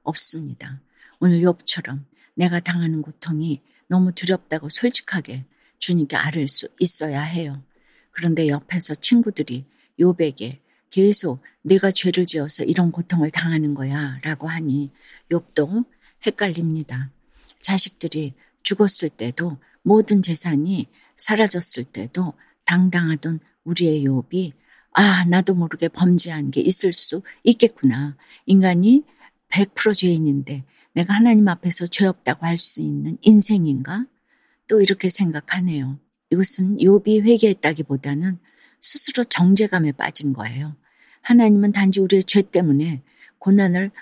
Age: 50-69